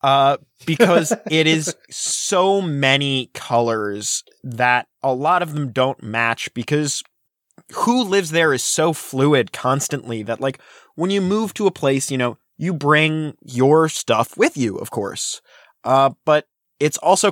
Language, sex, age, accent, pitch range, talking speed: English, male, 20-39, American, 120-160 Hz, 150 wpm